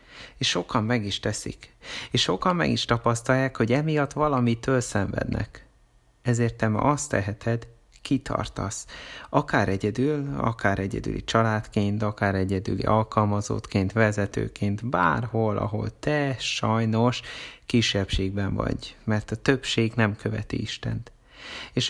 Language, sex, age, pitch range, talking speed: Hungarian, male, 30-49, 105-120 Hz, 115 wpm